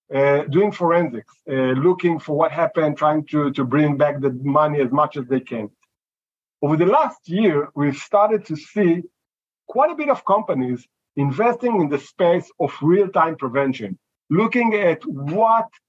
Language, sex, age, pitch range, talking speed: English, male, 50-69, 145-205 Hz, 160 wpm